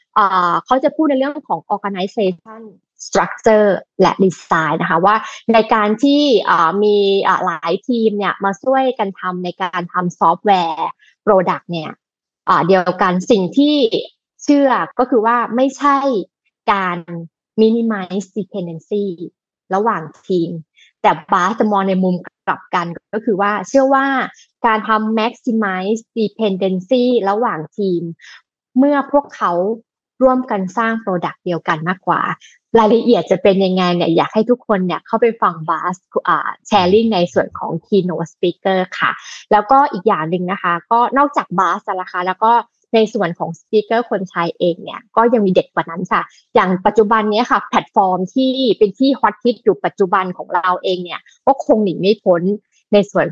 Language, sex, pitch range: Thai, female, 180-230 Hz